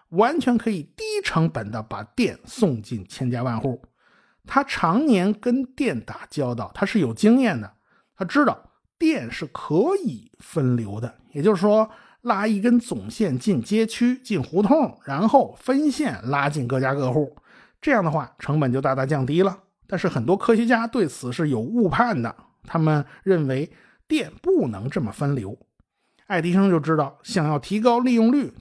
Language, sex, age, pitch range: Chinese, male, 50-69, 140-235 Hz